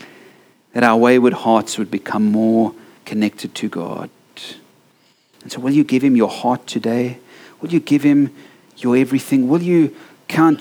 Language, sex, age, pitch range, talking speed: English, male, 40-59, 120-150 Hz, 160 wpm